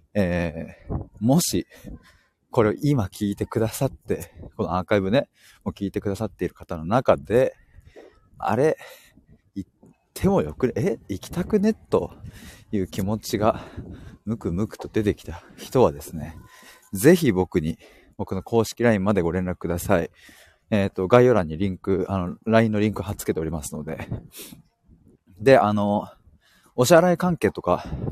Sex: male